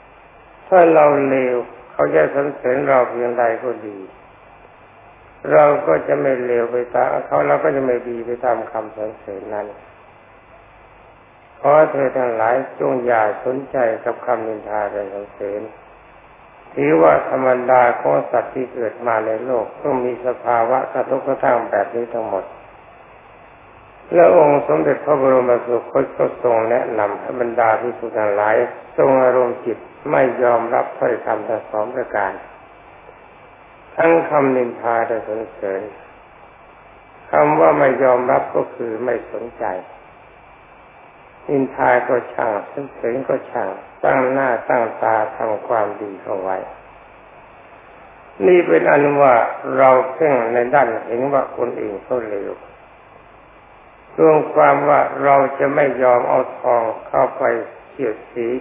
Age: 50-69